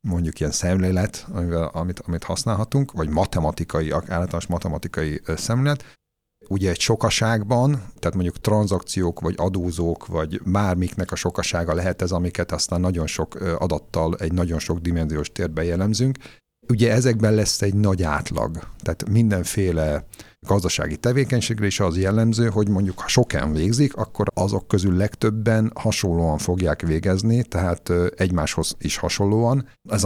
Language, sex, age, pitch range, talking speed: Hungarian, male, 50-69, 85-110 Hz, 135 wpm